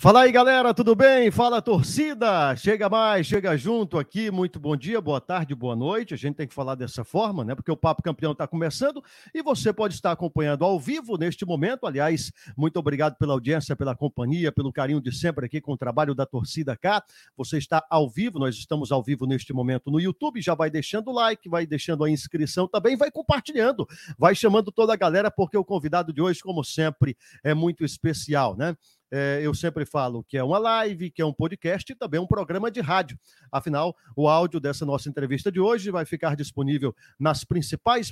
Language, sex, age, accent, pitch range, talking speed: Portuguese, male, 50-69, Brazilian, 145-195 Hz, 205 wpm